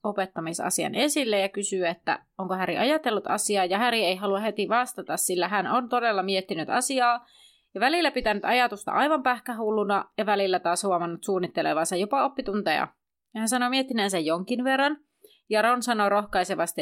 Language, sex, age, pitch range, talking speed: Finnish, female, 30-49, 185-245 Hz, 160 wpm